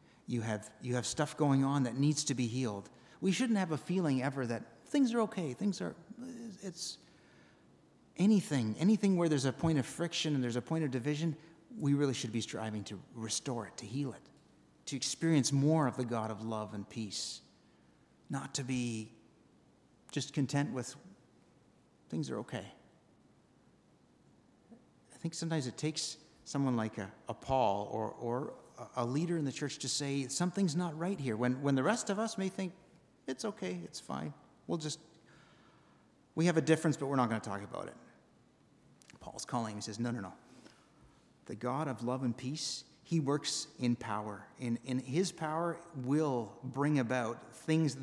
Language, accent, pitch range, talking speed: English, American, 120-165 Hz, 180 wpm